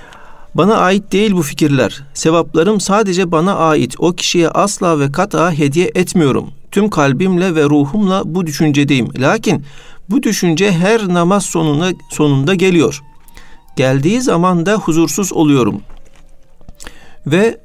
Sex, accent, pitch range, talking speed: male, native, 150-195 Hz, 120 wpm